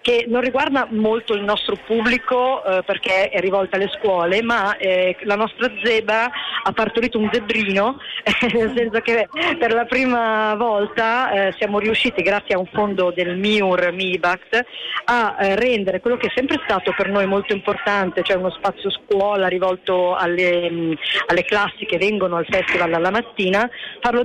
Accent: native